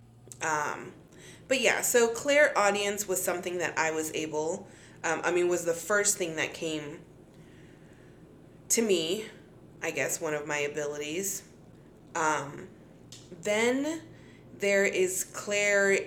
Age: 30-49